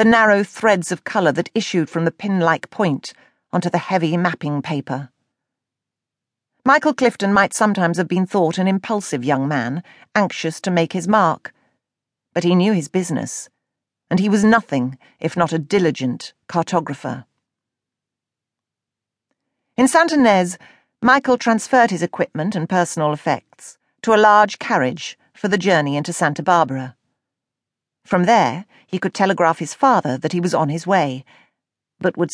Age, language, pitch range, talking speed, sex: 40-59, English, 155-210 Hz, 150 wpm, female